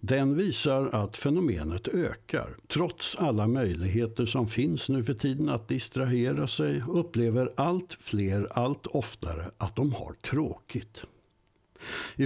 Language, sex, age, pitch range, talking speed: Swedish, male, 60-79, 105-135 Hz, 125 wpm